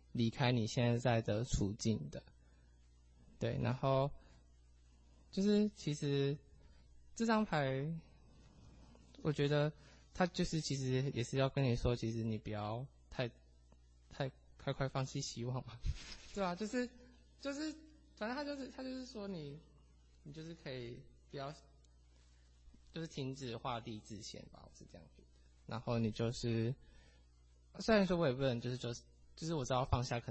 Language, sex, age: Chinese, male, 20-39